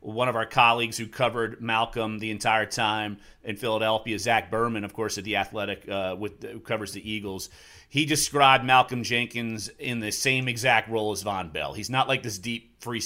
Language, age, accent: English, 30-49, American